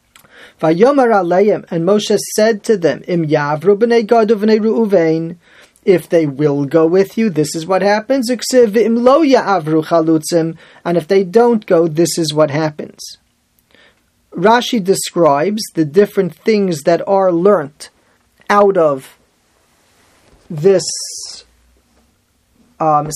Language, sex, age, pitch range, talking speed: English, male, 30-49, 160-205 Hz, 95 wpm